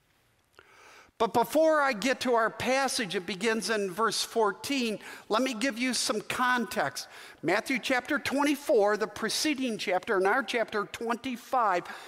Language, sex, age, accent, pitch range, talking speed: English, male, 50-69, American, 215-260 Hz, 140 wpm